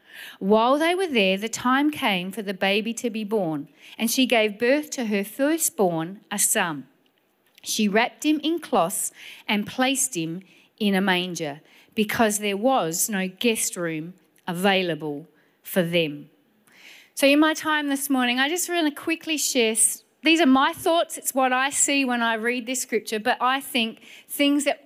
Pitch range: 215-315 Hz